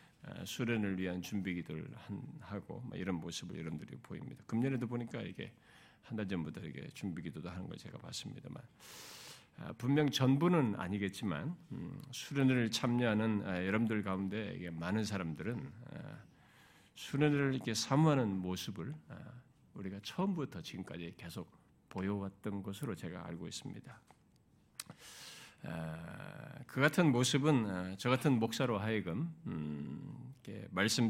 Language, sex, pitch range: Korean, male, 95-135 Hz